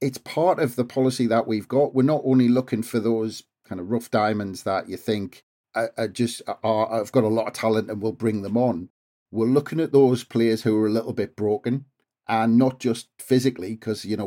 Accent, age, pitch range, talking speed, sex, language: British, 40-59, 110-130 Hz, 225 wpm, male, English